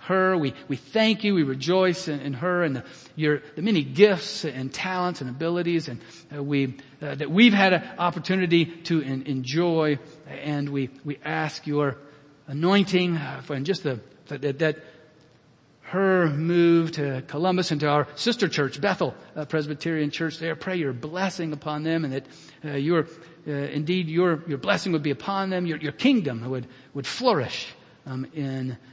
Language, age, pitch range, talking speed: English, 50-69, 130-170 Hz, 170 wpm